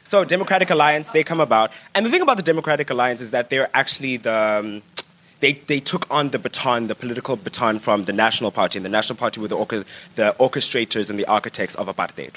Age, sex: 20-39, male